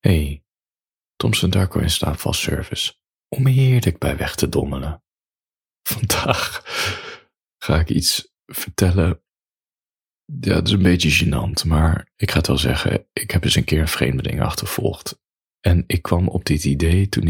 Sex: male